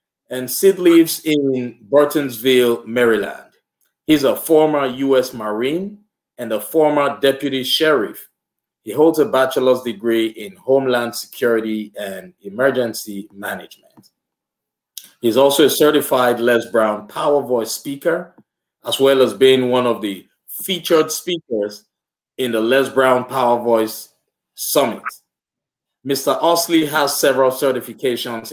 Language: English